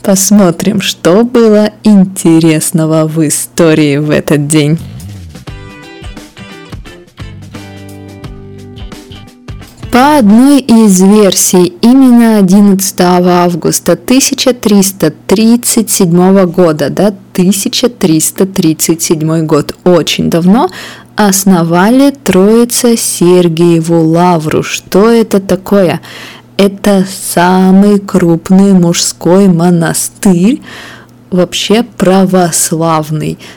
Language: Russian